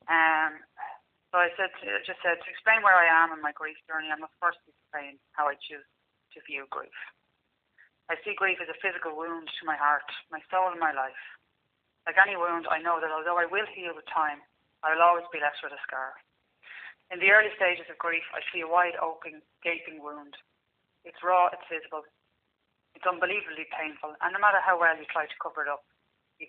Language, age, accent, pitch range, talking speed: English, 30-49, Irish, 155-180 Hz, 205 wpm